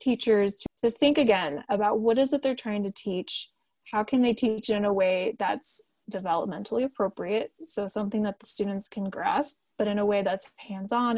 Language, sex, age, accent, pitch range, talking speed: English, female, 20-39, American, 205-240 Hz, 190 wpm